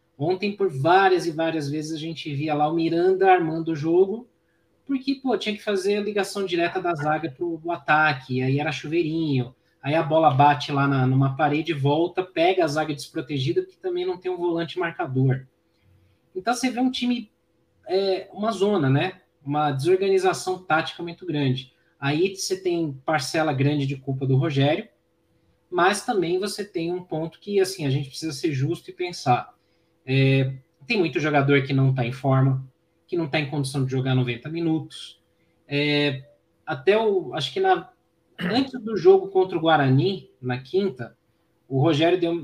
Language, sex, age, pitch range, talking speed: Portuguese, male, 20-39, 140-190 Hz, 175 wpm